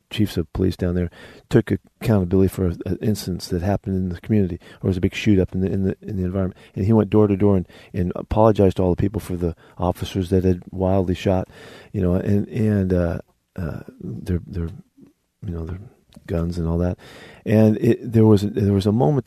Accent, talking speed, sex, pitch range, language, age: American, 225 wpm, male, 90-110 Hz, English, 40-59